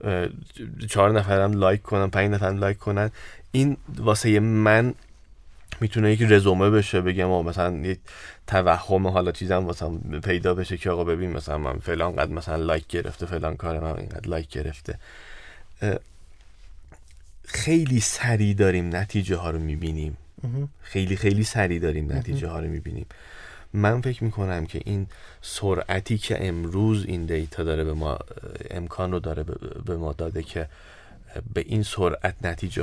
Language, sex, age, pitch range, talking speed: Persian, male, 30-49, 80-105 Hz, 140 wpm